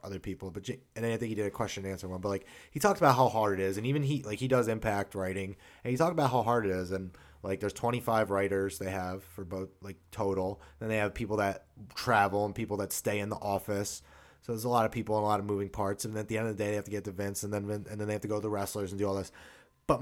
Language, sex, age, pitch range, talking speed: English, male, 20-39, 95-130 Hz, 310 wpm